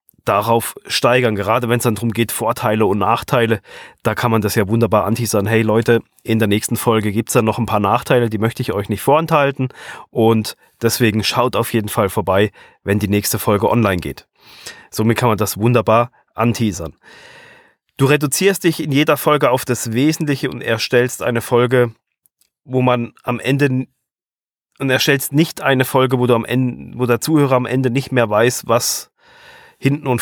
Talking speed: 185 wpm